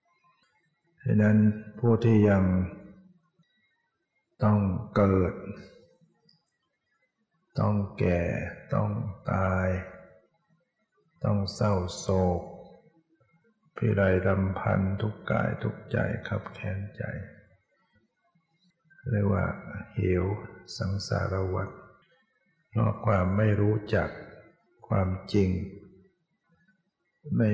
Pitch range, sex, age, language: 95-125 Hz, male, 60-79, Thai